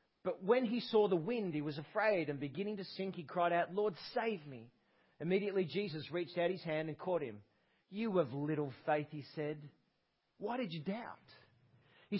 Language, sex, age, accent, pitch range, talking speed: English, male, 40-59, Australian, 160-225 Hz, 190 wpm